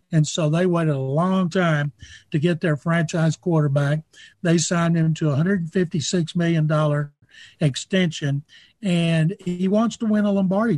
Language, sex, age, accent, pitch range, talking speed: English, male, 60-79, American, 160-190 Hz, 145 wpm